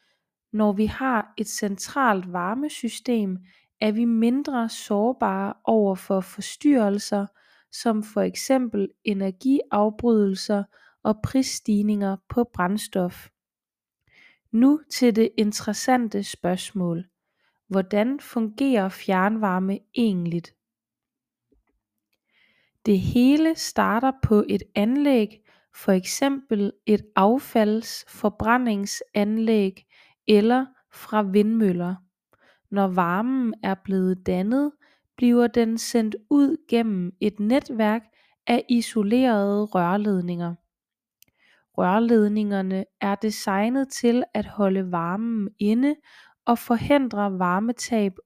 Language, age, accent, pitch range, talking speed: Danish, 20-39, native, 195-240 Hz, 85 wpm